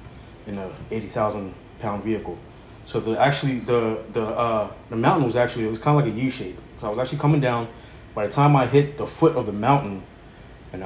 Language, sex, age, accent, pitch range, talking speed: English, male, 20-39, American, 110-130 Hz, 210 wpm